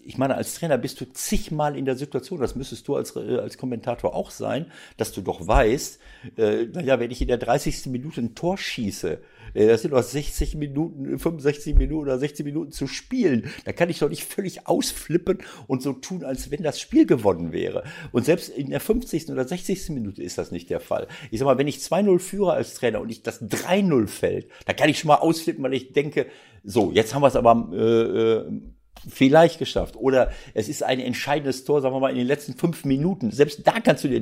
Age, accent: 60-79, German